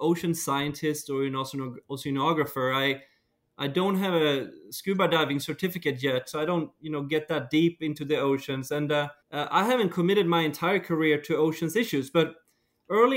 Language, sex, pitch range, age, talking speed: English, male, 145-185 Hz, 20-39, 180 wpm